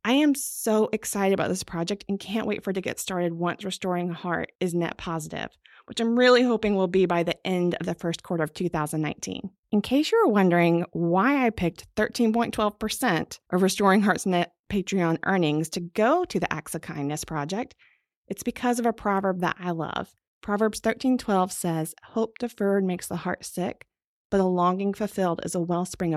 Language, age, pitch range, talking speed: English, 30-49, 175-230 Hz, 190 wpm